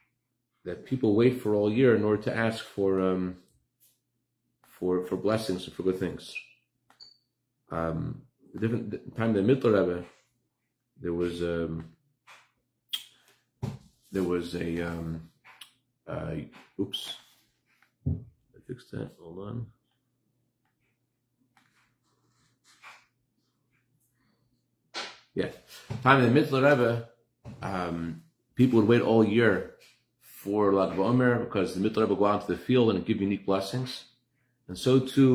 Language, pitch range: English, 95-125 Hz